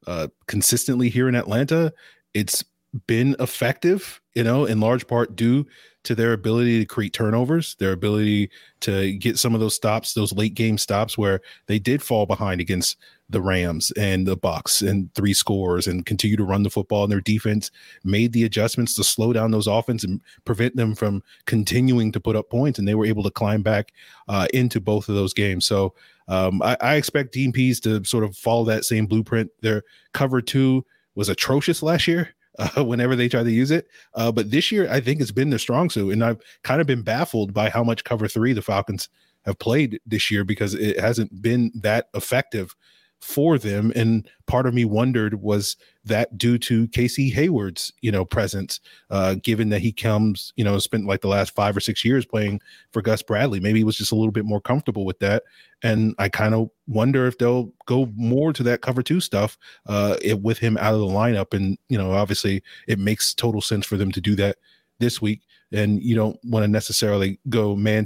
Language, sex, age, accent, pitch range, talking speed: English, male, 30-49, American, 105-120 Hz, 210 wpm